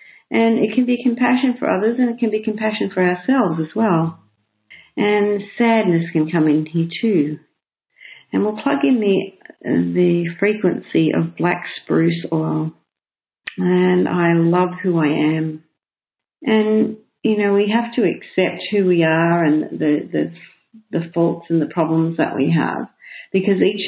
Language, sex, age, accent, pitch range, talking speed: English, female, 50-69, Australian, 160-210 Hz, 155 wpm